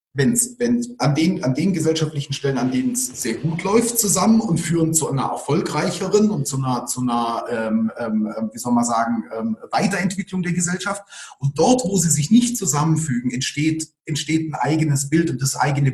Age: 30-49